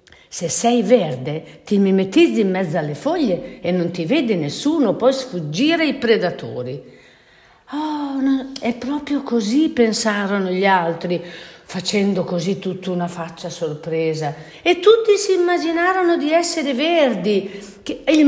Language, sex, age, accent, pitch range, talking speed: Italian, female, 50-69, native, 175-265 Hz, 135 wpm